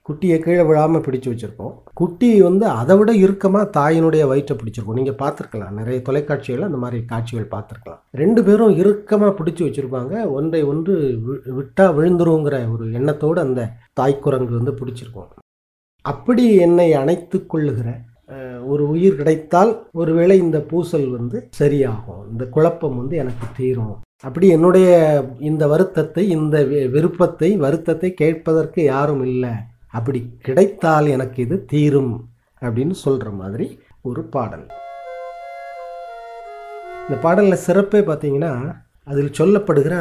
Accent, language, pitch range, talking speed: native, Tamil, 120-175 Hz, 115 wpm